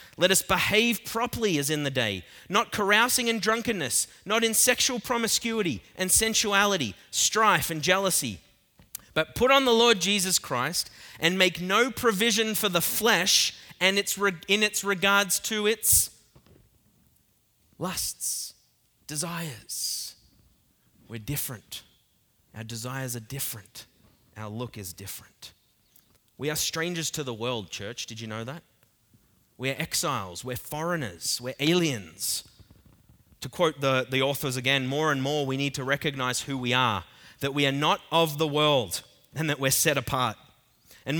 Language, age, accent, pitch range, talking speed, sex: English, 20-39, Australian, 125-185 Hz, 145 wpm, male